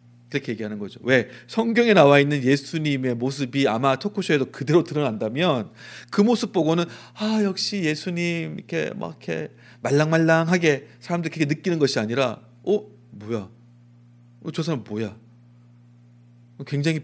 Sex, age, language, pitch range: male, 30-49, Korean, 120-160 Hz